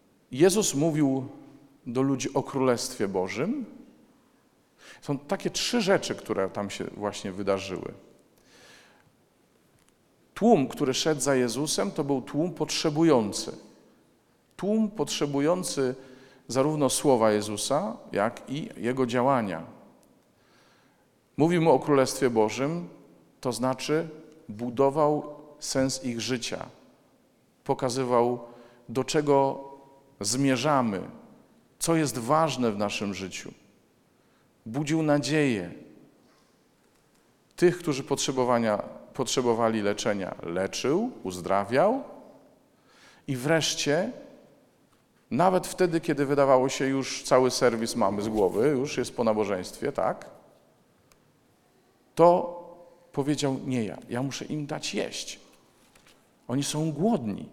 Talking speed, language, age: 95 wpm, Polish, 50-69